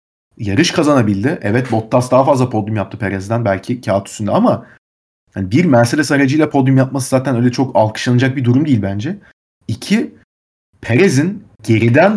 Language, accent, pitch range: Turkish, native, 105-130 Hz